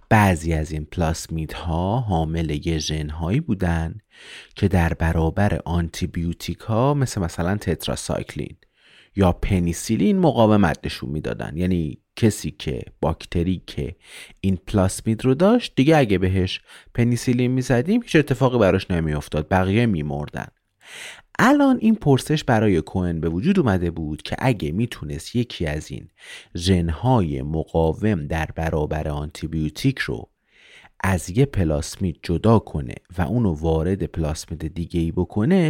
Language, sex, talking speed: Persian, male, 130 wpm